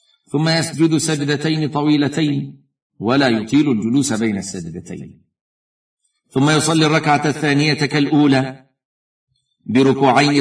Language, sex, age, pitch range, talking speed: Arabic, male, 50-69, 125-140 Hz, 85 wpm